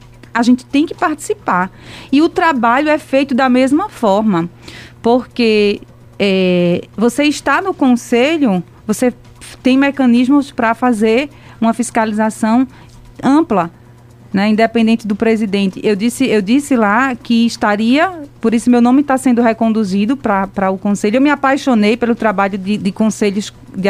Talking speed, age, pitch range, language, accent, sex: 140 wpm, 20-39, 215-270 Hz, Portuguese, Brazilian, female